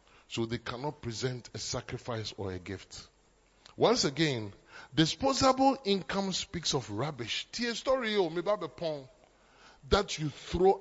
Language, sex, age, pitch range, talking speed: English, male, 30-49, 140-205 Hz, 105 wpm